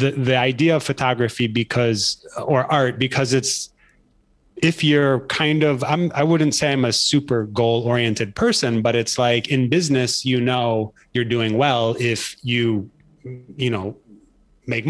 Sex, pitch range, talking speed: male, 115-135 Hz, 155 wpm